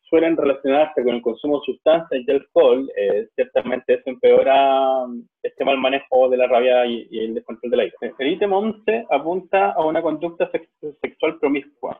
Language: Spanish